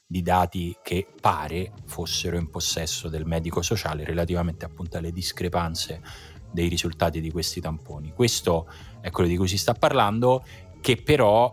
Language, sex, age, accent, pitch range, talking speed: Italian, male, 30-49, native, 80-95 Hz, 150 wpm